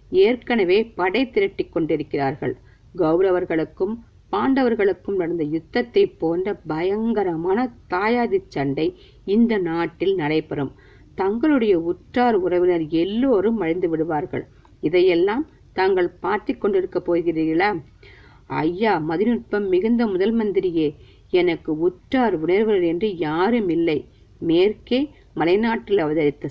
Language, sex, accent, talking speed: Tamil, female, native, 85 wpm